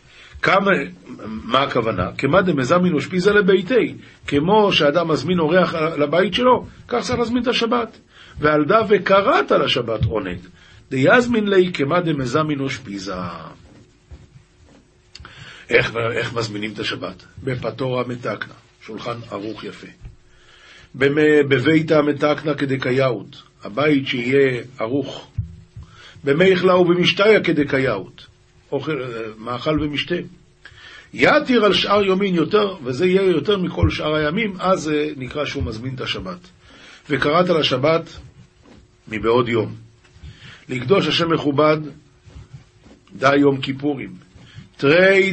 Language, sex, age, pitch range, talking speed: Hebrew, male, 50-69, 125-175 Hz, 105 wpm